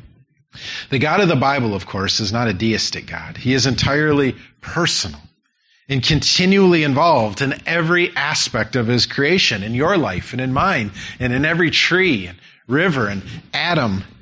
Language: English